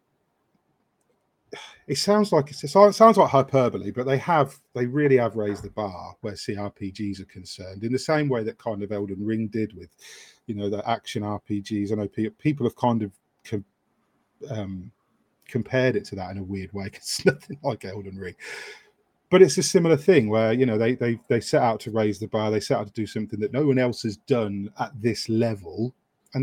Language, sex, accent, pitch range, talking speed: English, male, British, 105-140 Hz, 205 wpm